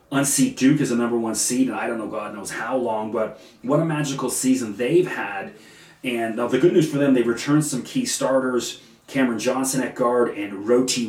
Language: English